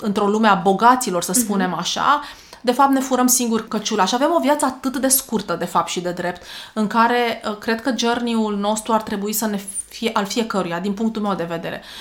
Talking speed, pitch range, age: 215 wpm, 195-230 Hz, 30-49